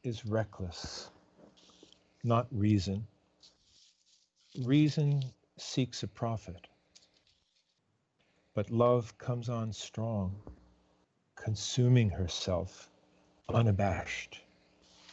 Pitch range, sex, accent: 85-120 Hz, male, American